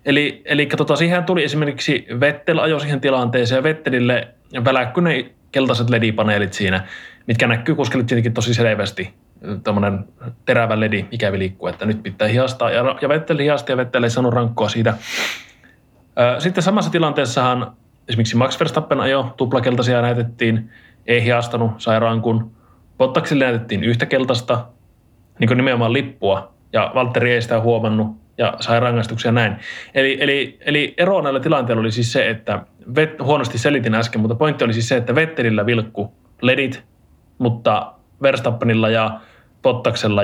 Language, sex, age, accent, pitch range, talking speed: Finnish, male, 20-39, native, 115-140 Hz, 140 wpm